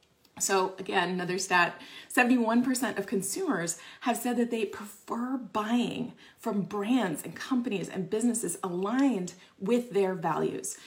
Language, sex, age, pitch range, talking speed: English, female, 30-49, 185-230 Hz, 125 wpm